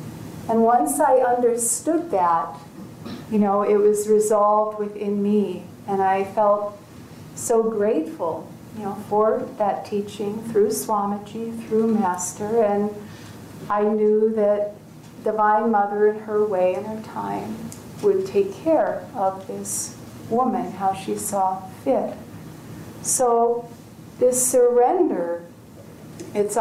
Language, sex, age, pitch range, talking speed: English, female, 40-59, 195-230 Hz, 115 wpm